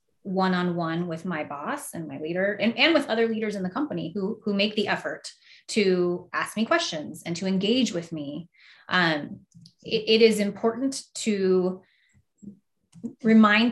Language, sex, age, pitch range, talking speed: English, female, 30-49, 180-215 Hz, 155 wpm